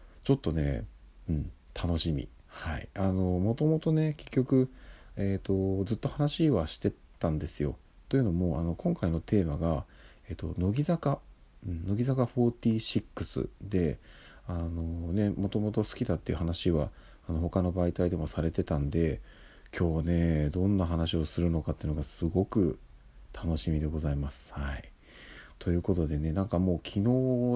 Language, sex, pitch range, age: Japanese, male, 80-100 Hz, 40-59